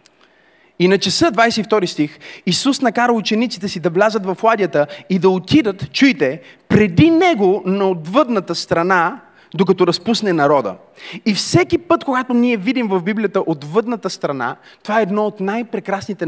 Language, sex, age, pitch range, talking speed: Bulgarian, male, 30-49, 180-245 Hz, 145 wpm